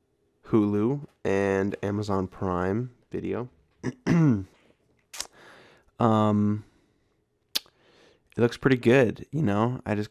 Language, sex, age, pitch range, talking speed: English, male, 20-39, 100-120 Hz, 85 wpm